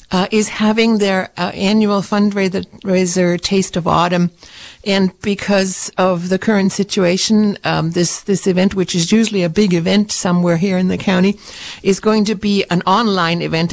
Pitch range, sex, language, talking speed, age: 175-205 Hz, female, English, 165 wpm, 60-79